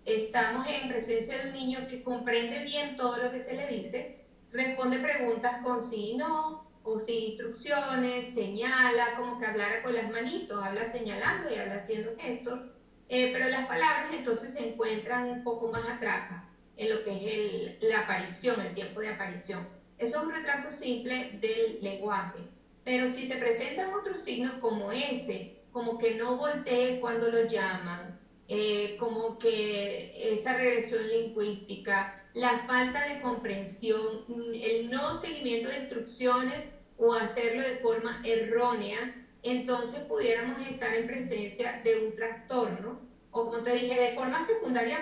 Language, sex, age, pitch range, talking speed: Spanish, female, 30-49, 225-260 Hz, 155 wpm